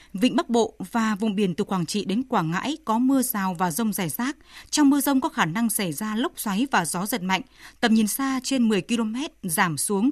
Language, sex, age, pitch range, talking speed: Vietnamese, female, 20-39, 200-255 Hz, 245 wpm